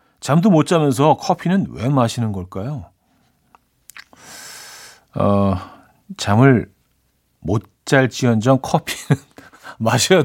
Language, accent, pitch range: Korean, native, 105-145 Hz